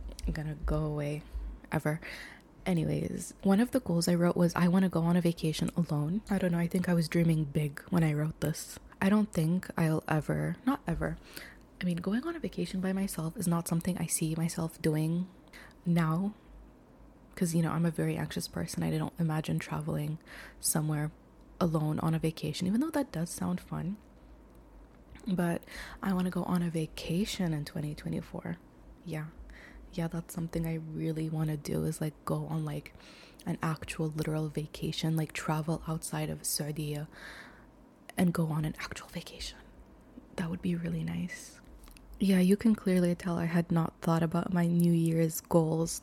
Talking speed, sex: 180 wpm, female